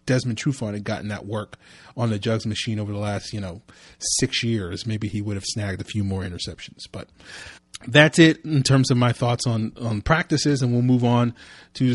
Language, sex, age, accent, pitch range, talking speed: English, male, 30-49, American, 110-125 Hz, 210 wpm